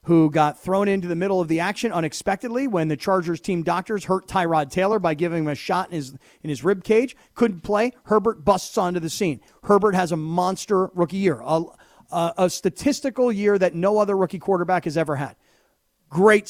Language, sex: English, male